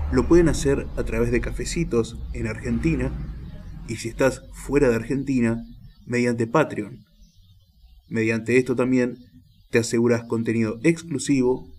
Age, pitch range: 20-39, 90-125 Hz